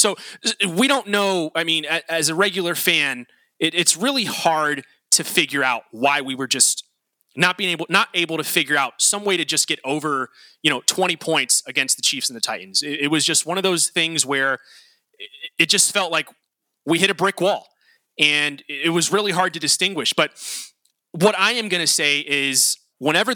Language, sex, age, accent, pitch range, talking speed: English, male, 30-49, American, 155-200 Hz, 205 wpm